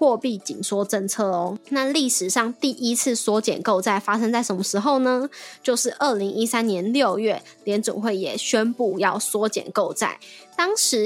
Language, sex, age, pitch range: Chinese, female, 20-39, 200-245 Hz